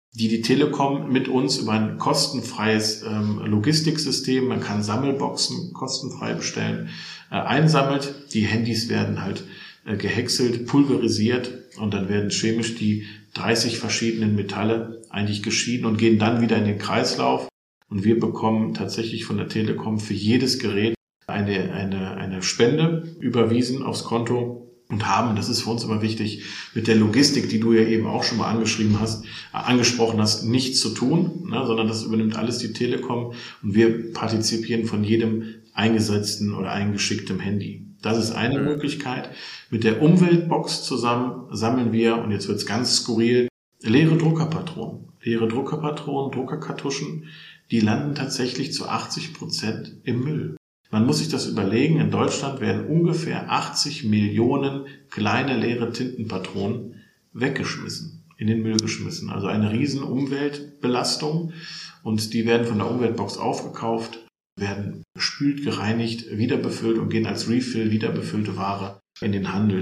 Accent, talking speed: German, 145 wpm